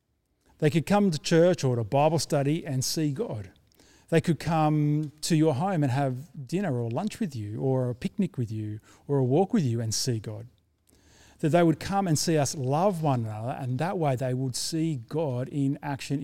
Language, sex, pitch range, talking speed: English, male, 125-160 Hz, 210 wpm